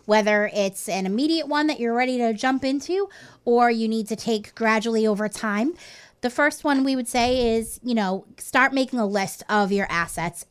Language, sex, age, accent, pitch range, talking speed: English, female, 20-39, American, 185-230 Hz, 200 wpm